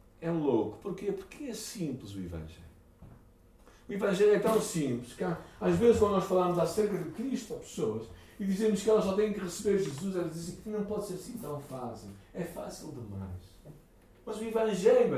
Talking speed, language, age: 190 wpm, Portuguese, 60-79